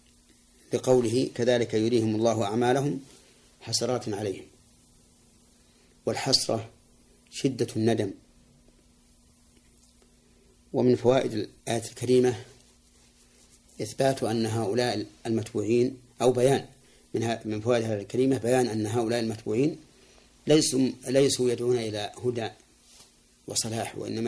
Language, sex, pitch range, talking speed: Arabic, male, 110-120 Hz, 85 wpm